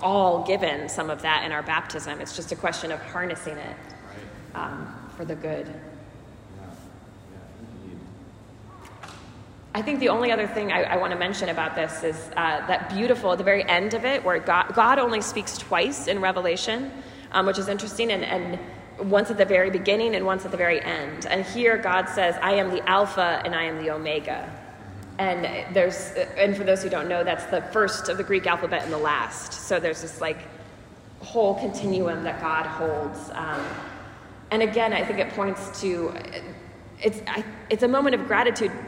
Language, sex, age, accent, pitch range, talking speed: English, female, 20-39, American, 155-200 Hz, 185 wpm